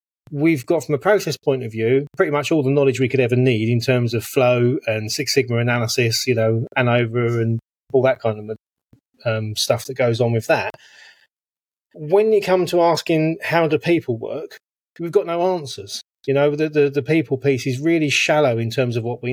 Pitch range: 120-145 Hz